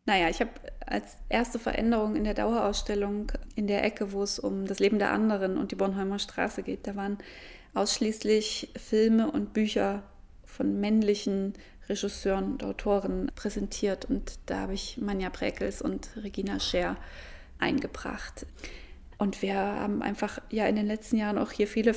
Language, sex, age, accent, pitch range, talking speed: German, female, 20-39, German, 205-225 Hz, 160 wpm